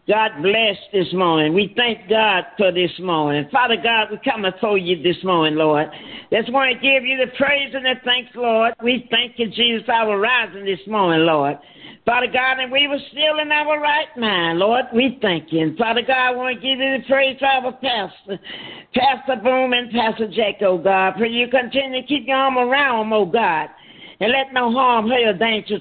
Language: English